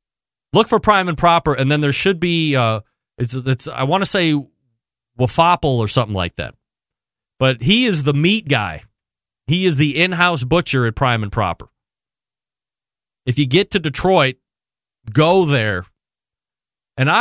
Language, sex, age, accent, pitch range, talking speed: English, male, 30-49, American, 130-170 Hz, 155 wpm